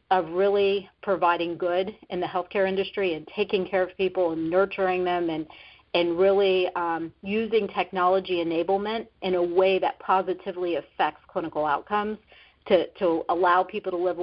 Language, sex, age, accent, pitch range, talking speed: English, female, 40-59, American, 170-195 Hz, 155 wpm